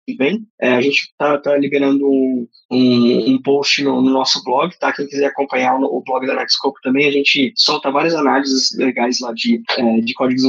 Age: 20-39